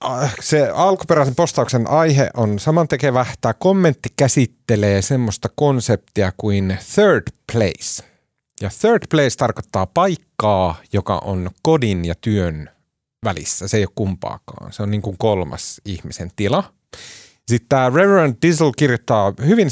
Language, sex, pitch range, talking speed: Finnish, male, 100-145 Hz, 130 wpm